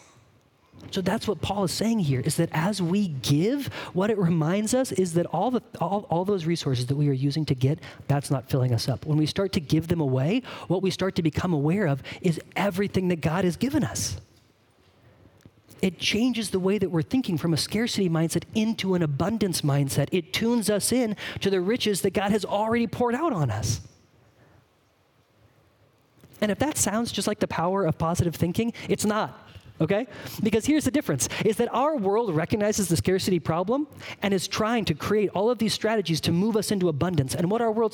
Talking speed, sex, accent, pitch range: 205 wpm, male, American, 155-215 Hz